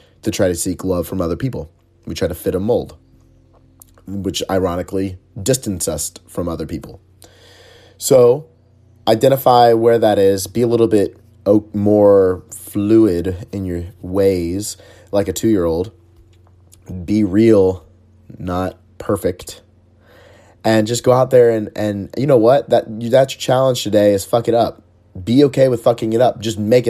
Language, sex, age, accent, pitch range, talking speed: English, male, 30-49, American, 90-110 Hz, 155 wpm